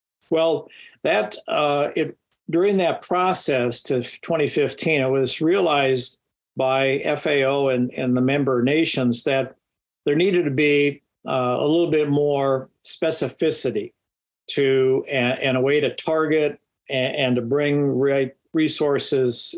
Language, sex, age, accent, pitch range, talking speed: English, male, 50-69, American, 130-155 Hz, 135 wpm